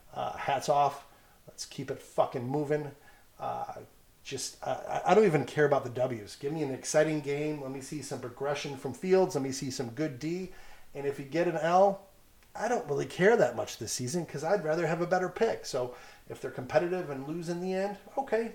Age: 30-49